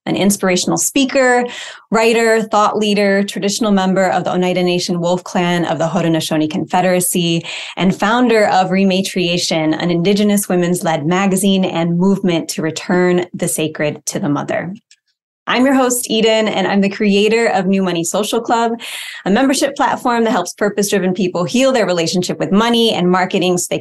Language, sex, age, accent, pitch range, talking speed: English, female, 20-39, American, 180-225 Hz, 165 wpm